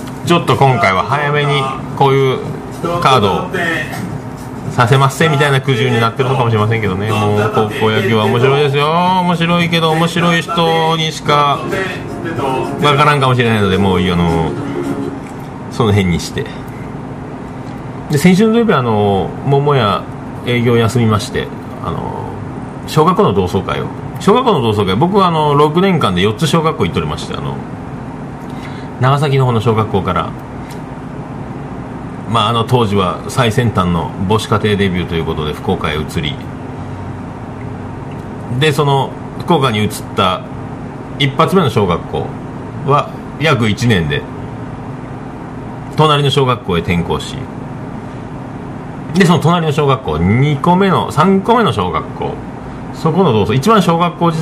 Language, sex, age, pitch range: Japanese, male, 40-59, 115-150 Hz